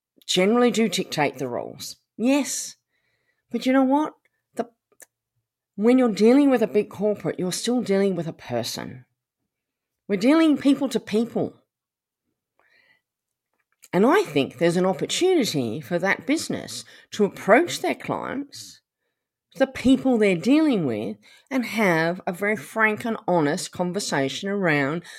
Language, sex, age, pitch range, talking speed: English, female, 40-59, 170-245 Hz, 130 wpm